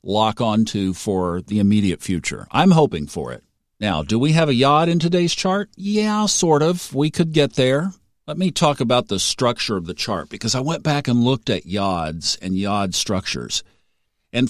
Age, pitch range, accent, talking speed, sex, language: 50-69, 100-145 Hz, American, 195 wpm, male, English